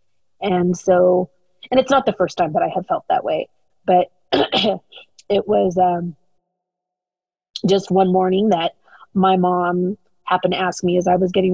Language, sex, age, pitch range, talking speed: English, female, 30-49, 180-205 Hz, 165 wpm